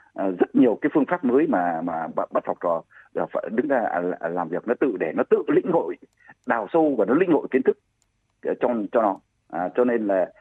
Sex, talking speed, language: male, 220 wpm, Vietnamese